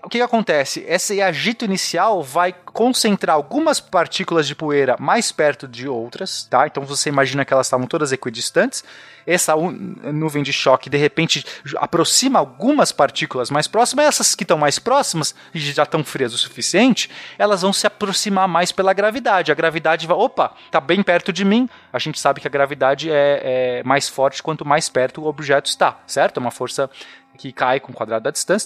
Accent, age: Brazilian, 20-39